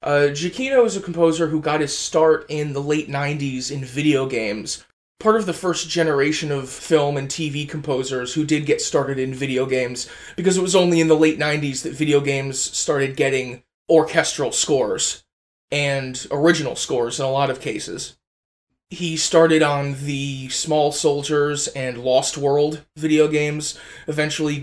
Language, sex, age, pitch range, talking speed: English, male, 20-39, 140-160 Hz, 165 wpm